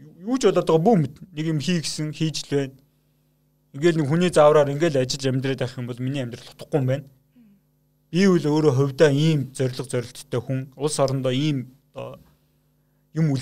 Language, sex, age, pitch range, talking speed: Russian, male, 30-49, 130-165 Hz, 65 wpm